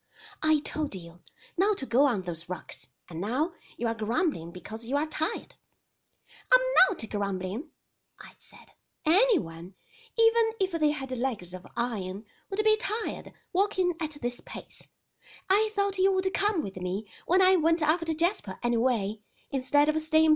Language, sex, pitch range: Chinese, female, 210-335 Hz